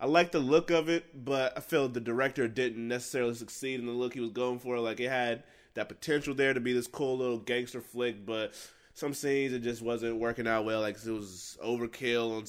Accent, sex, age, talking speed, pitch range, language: American, male, 20-39, 230 wpm, 110-135 Hz, English